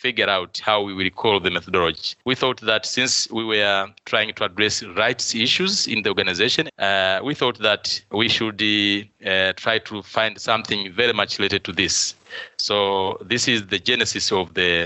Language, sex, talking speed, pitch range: English, male, 180 wpm, 100-125 Hz